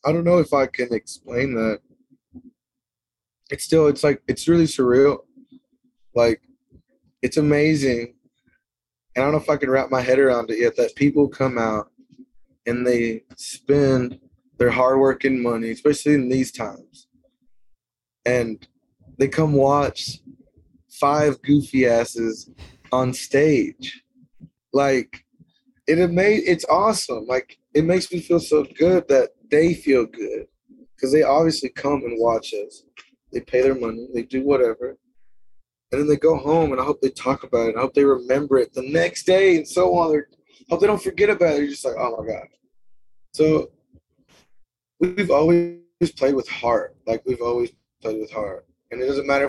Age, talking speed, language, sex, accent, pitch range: 20-39, 165 wpm, English, male, American, 125-175 Hz